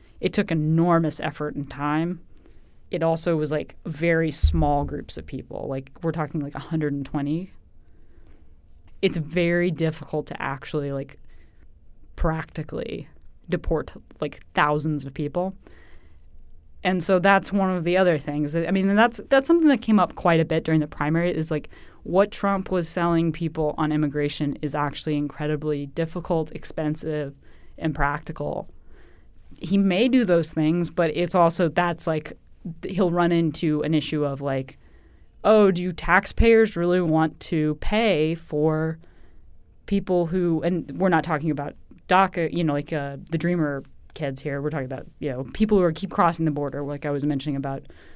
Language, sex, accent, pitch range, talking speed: English, female, American, 145-180 Hz, 160 wpm